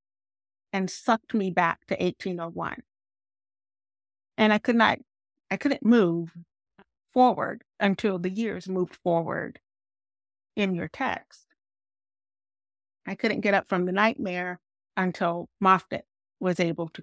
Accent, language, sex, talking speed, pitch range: American, English, female, 120 wpm, 175-245 Hz